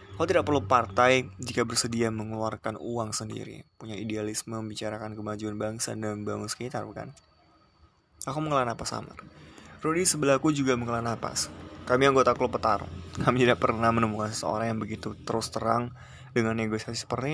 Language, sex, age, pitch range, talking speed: Indonesian, male, 20-39, 110-125 Hz, 150 wpm